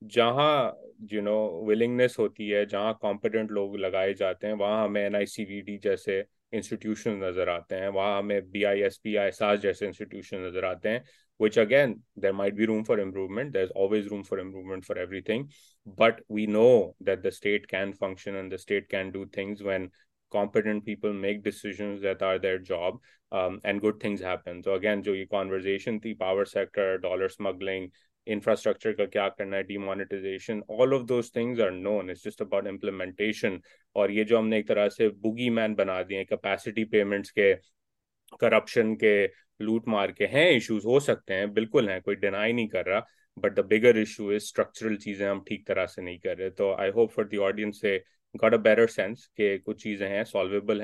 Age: 20-39